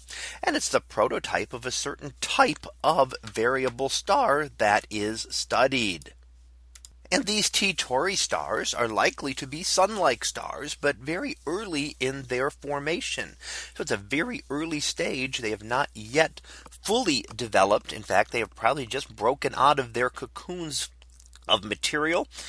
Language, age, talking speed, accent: English, 40-59, 150 wpm, American